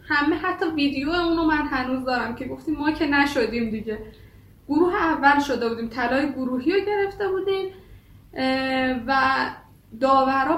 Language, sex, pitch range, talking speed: Persian, female, 250-320 Hz, 135 wpm